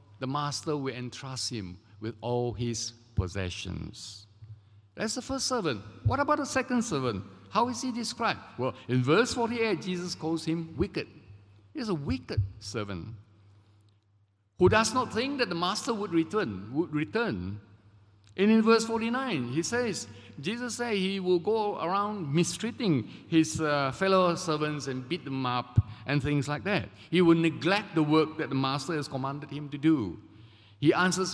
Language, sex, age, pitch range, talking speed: English, male, 50-69, 105-165 Hz, 165 wpm